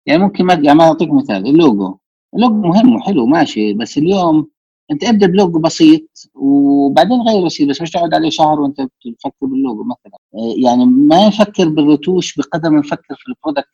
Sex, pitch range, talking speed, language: male, 135-195 Hz, 170 wpm, Arabic